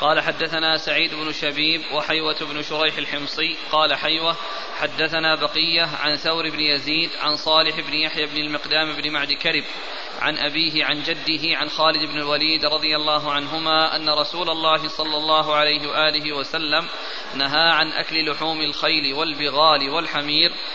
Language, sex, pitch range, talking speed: Arabic, male, 150-160 Hz, 150 wpm